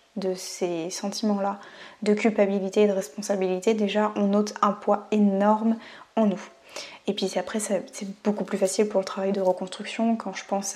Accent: French